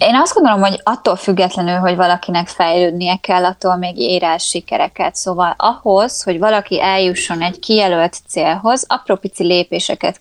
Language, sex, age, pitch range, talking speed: Hungarian, female, 20-39, 180-215 Hz, 140 wpm